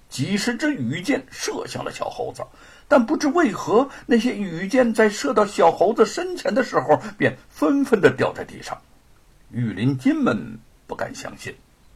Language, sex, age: Chinese, male, 60-79